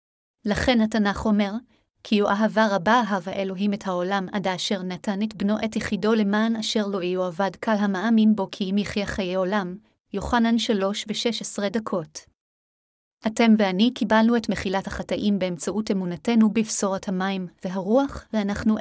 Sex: female